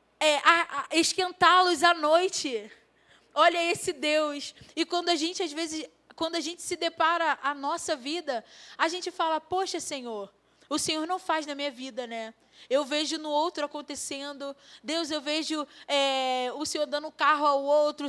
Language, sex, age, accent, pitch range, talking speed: Portuguese, female, 10-29, Brazilian, 280-330 Hz, 155 wpm